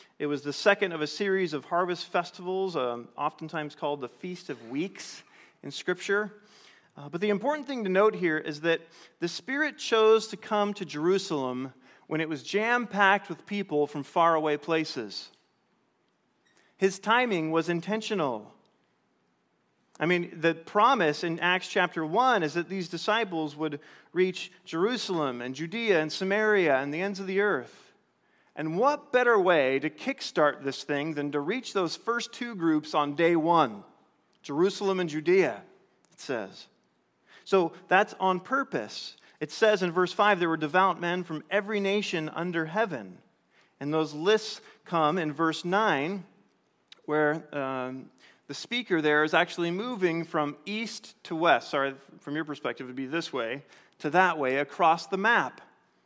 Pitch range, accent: 155-200 Hz, American